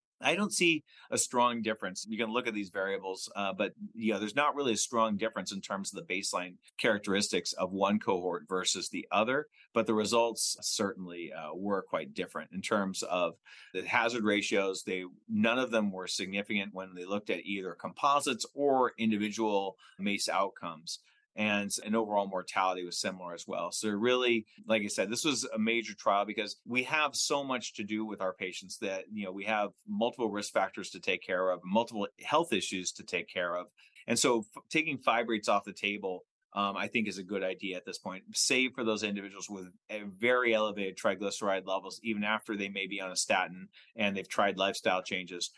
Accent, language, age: American, English, 30-49